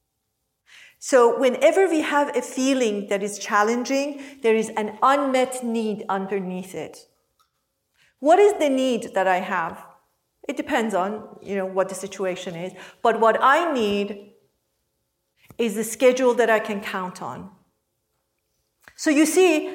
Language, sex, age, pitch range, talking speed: English, female, 50-69, 200-265 Hz, 135 wpm